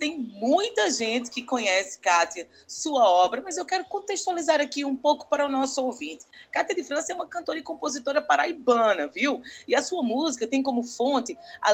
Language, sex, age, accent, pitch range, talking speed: Portuguese, female, 20-39, Brazilian, 210-300 Hz, 190 wpm